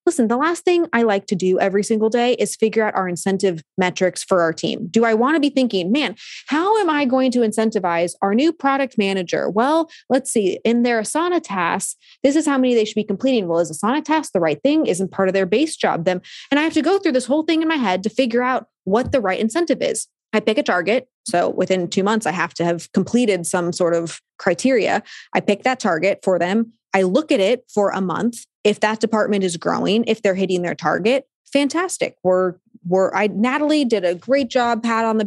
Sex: female